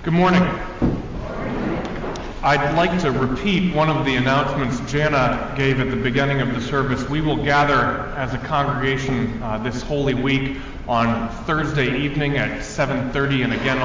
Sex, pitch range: male, 120-145 Hz